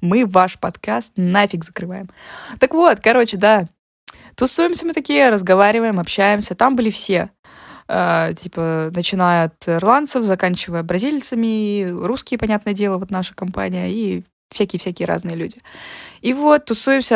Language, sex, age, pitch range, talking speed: Russian, female, 20-39, 185-245 Hz, 130 wpm